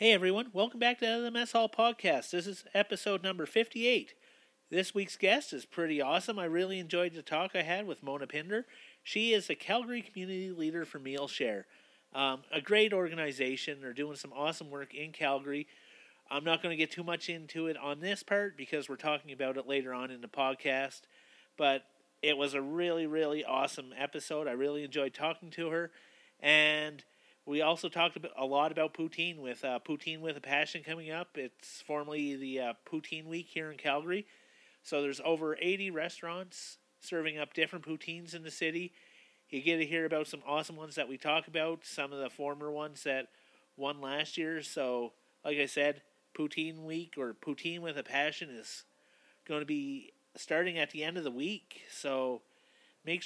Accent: American